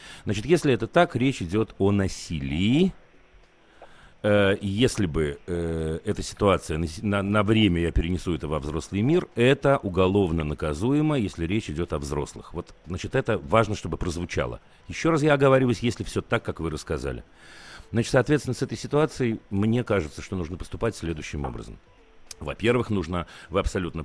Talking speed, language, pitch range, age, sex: 155 wpm, Russian, 90-125 Hz, 40-59, male